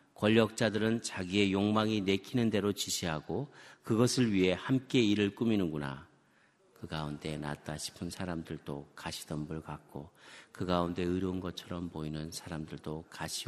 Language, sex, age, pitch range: Korean, male, 40-59, 80-105 Hz